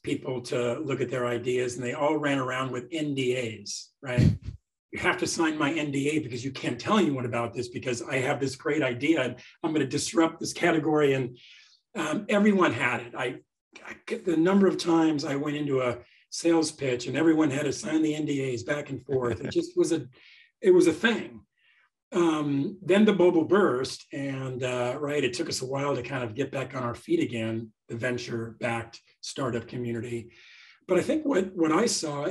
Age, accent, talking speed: 40-59, American, 200 wpm